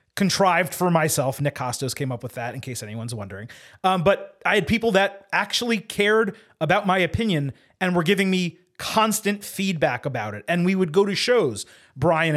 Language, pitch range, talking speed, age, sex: English, 145-185 Hz, 190 wpm, 30-49, male